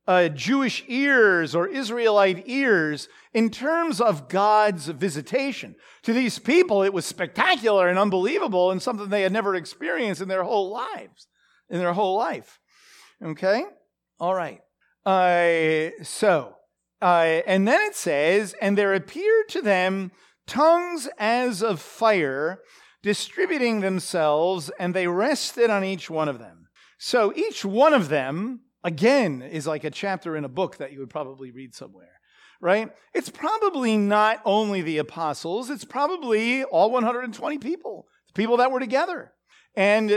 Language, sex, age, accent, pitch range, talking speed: English, male, 40-59, American, 185-275 Hz, 145 wpm